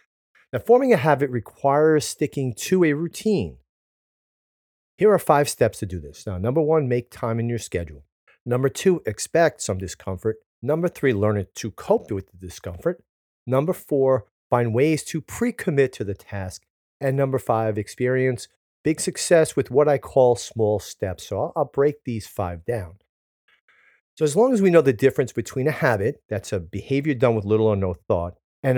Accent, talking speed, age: American, 180 wpm, 40-59